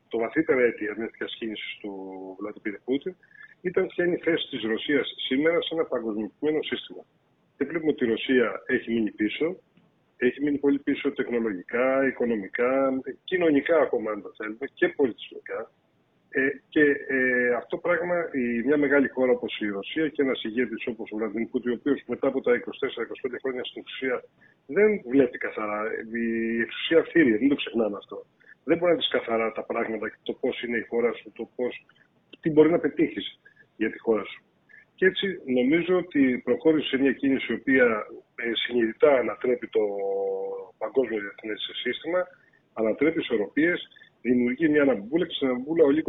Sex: male